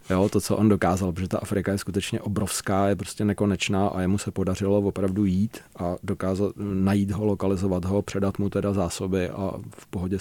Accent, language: native, Czech